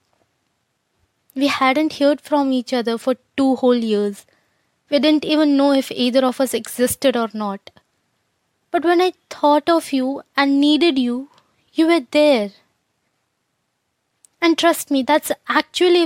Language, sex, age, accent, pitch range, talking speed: English, female, 20-39, Indian, 245-295 Hz, 140 wpm